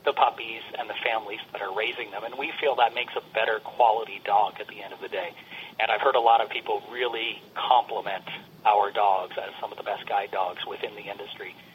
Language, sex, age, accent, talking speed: English, male, 40-59, American, 230 wpm